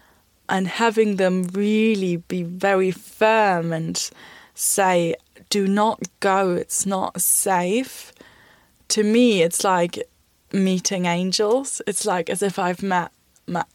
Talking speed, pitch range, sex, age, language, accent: 120 wpm, 175-210 Hz, female, 10-29, English, British